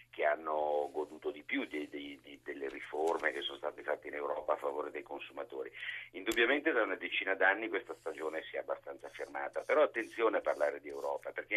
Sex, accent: male, native